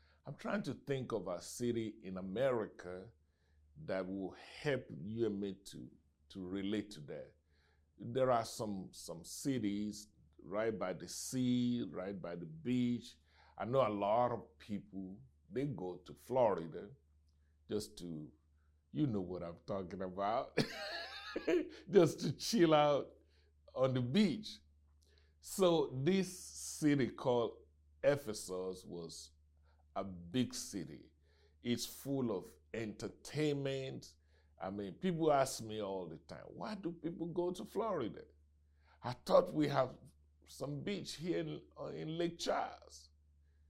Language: English